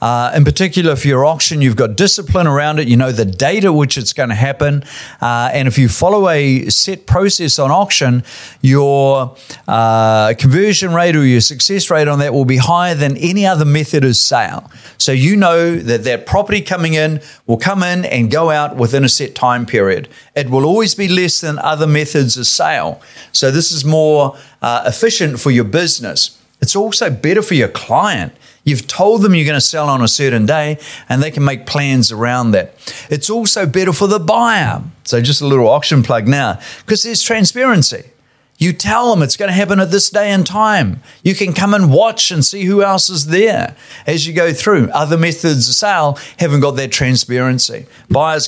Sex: male